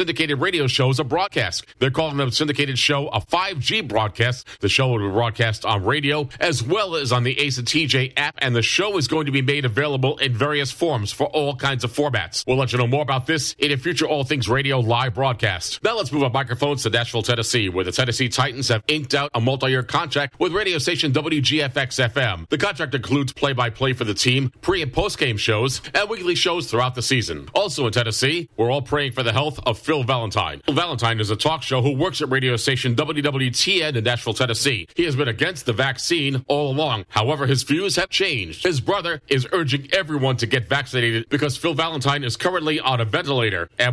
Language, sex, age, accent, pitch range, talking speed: English, male, 40-59, American, 120-145 Hz, 220 wpm